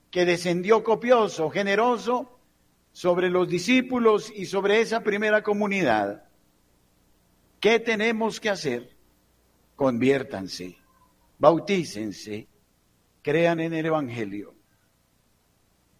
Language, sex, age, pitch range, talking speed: Spanish, male, 60-79, 135-210 Hz, 85 wpm